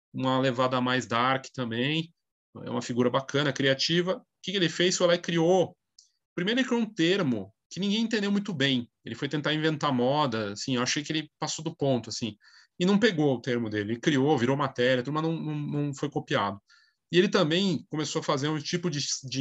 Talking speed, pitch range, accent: 215 wpm, 125-165 Hz, Brazilian